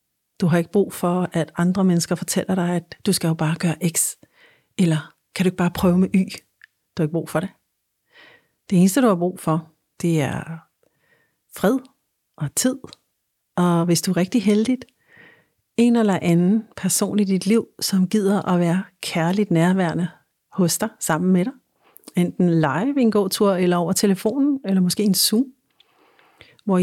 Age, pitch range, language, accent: 60-79, 170-205 Hz, Danish, native